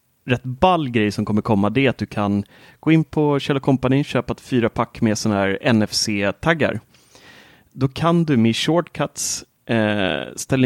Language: Swedish